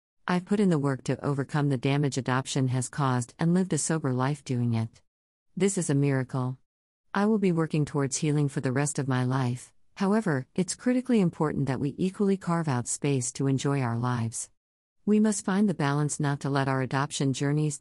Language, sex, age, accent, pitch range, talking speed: English, female, 50-69, American, 130-160 Hz, 200 wpm